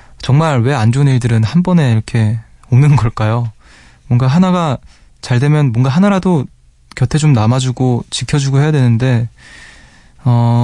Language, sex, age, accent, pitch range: Korean, male, 20-39, native, 110-135 Hz